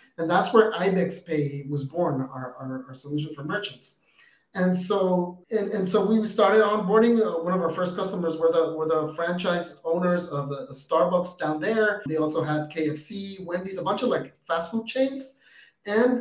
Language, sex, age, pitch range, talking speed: English, male, 30-49, 155-190 Hz, 185 wpm